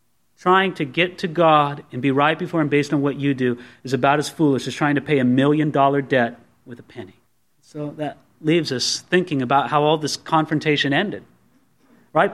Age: 30-49